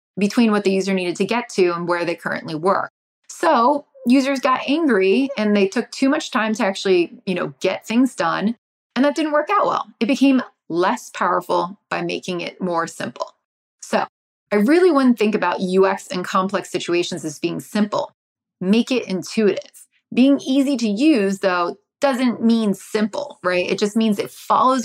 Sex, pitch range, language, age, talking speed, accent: female, 185-245 Hz, English, 30-49, 180 wpm, American